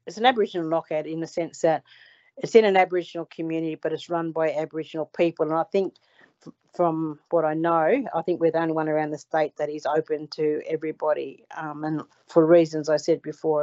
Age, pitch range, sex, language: 40-59, 155-180 Hz, female, English